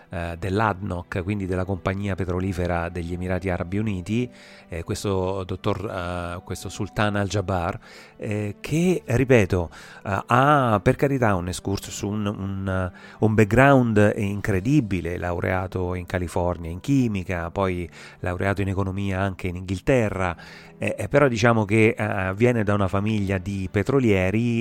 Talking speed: 110 wpm